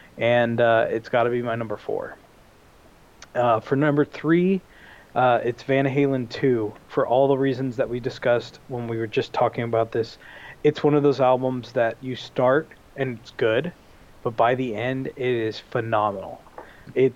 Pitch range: 120-140 Hz